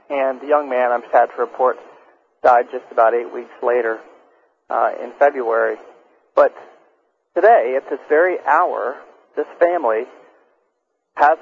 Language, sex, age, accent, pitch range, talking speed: English, male, 40-59, American, 125-175 Hz, 135 wpm